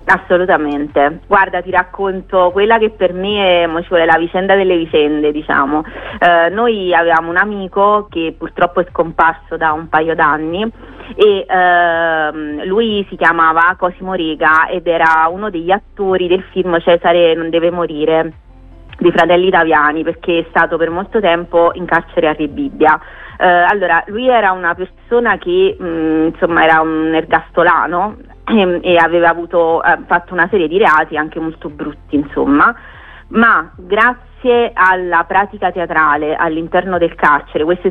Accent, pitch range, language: native, 160-190 Hz, Italian